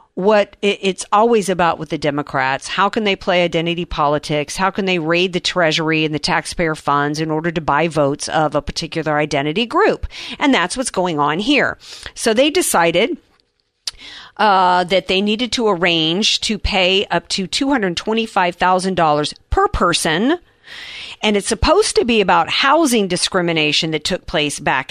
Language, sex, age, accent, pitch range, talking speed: English, female, 50-69, American, 170-245 Hz, 160 wpm